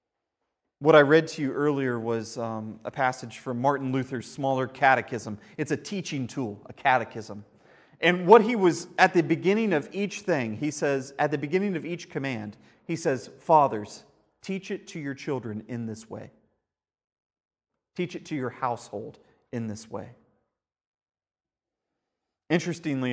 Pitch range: 125-165 Hz